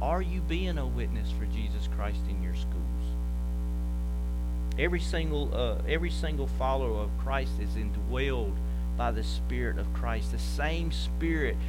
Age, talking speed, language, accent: 50-69, 150 wpm, English, American